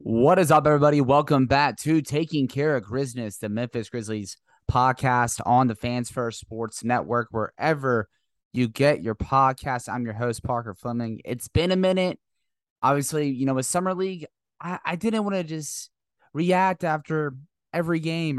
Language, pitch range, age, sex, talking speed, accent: English, 110-145 Hz, 20-39, male, 165 wpm, American